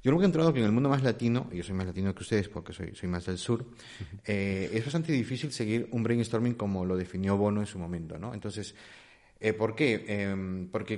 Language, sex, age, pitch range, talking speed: Spanish, male, 30-49, 100-125 Hz, 230 wpm